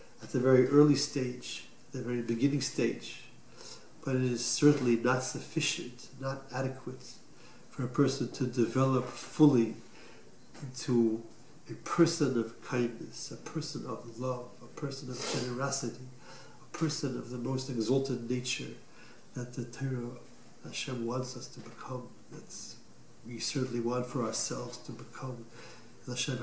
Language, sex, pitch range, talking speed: English, male, 120-145 Hz, 135 wpm